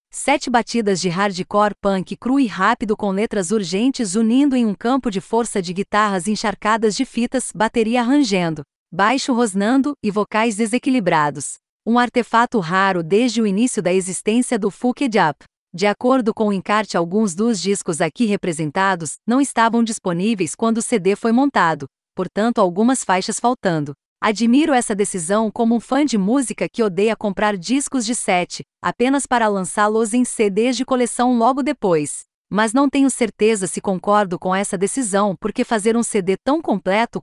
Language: Portuguese